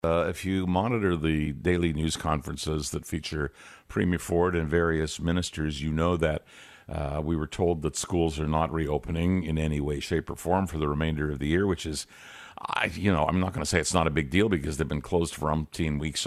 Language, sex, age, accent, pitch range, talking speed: English, male, 50-69, American, 75-90 Hz, 220 wpm